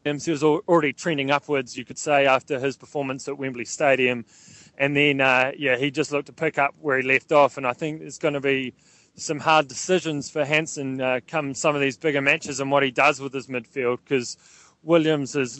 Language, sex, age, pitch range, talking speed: English, male, 20-39, 130-150 Hz, 220 wpm